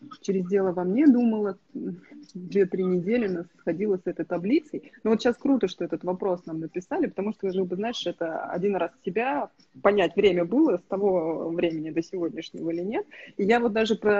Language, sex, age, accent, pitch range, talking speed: Russian, female, 30-49, native, 185-240 Hz, 180 wpm